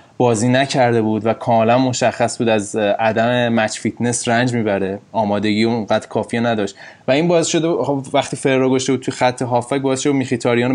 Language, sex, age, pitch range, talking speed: Persian, male, 20-39, 110-125 Hz, 185 wpm